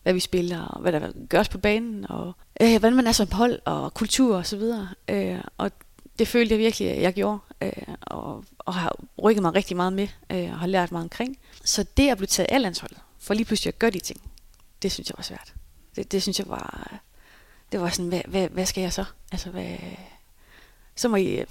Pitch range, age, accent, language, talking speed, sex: 180-220 Hz, 30-49, native, Danish, 230 wpm, female